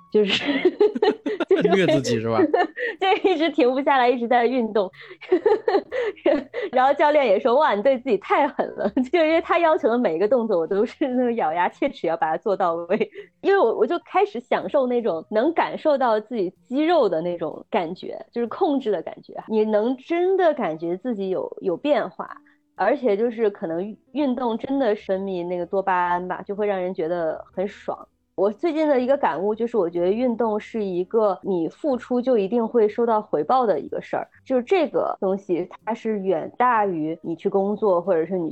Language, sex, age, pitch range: Chinese, female, 20-39, 185-285 Hz